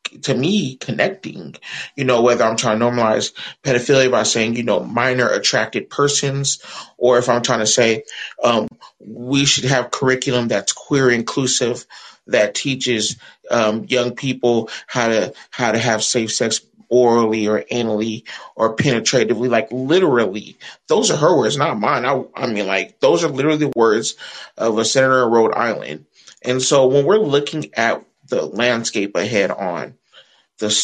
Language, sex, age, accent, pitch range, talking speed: English, male, 30-49, American, 115-140 Hz, 160 wpm